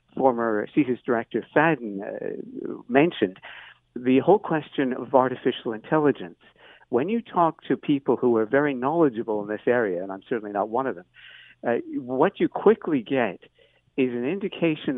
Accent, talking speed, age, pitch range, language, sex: American, 155 wpm, 60-79, 115-155 Hz, English, male